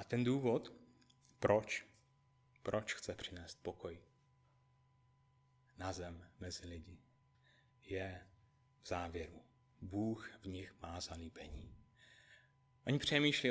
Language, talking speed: Czech, 100 wpm